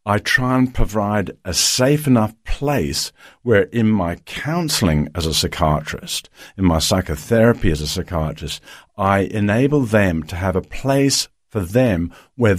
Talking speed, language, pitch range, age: 150 wpm, English, 90-130 Hz, 50-69